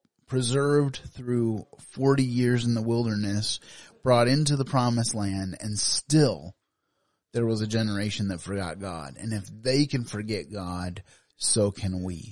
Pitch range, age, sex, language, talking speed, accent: 100-125 Hz, 30-49, male, English, 145 wpm, American